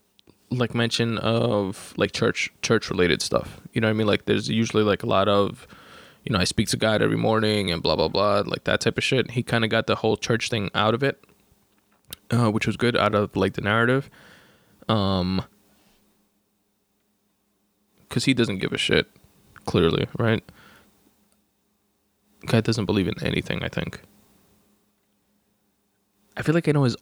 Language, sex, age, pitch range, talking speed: English, male, 20-39, 100-120 Hz, 180 wpm